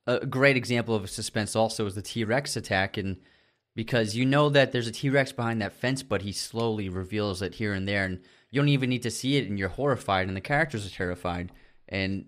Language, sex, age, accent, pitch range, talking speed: English, male, 20-39, American, 100-120 Hz, 230 wpm